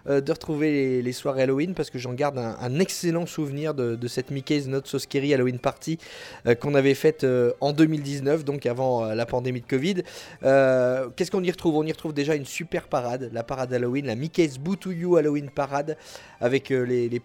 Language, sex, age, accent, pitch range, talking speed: French, male, 30-49, French, 125-155 Hz, 215 wpm